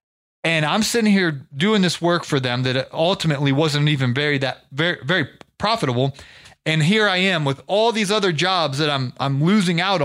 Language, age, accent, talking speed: English, 30-49, American, 190 wpm